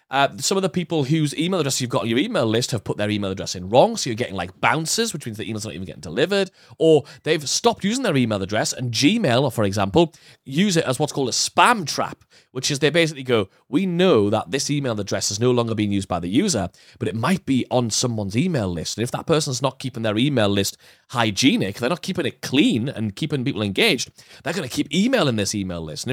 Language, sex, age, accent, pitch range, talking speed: English, male, 30-49, British, 110-175 Hz, 250 wpm